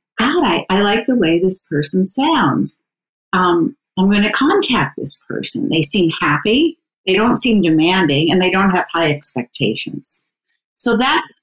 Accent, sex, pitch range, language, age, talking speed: American, female, 170-215 Hz, English, 50-69, 165 wpm